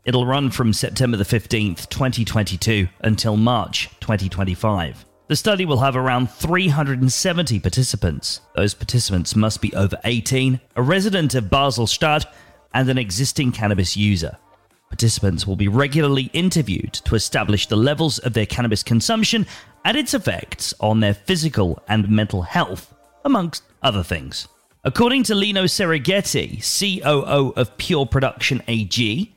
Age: 30-49